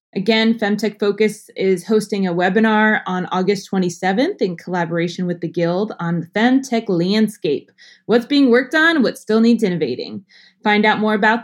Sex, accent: female, American